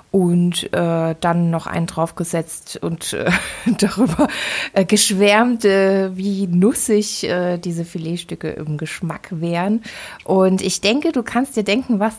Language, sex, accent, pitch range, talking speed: German, female, German, 165-205 Hz, 140 wpm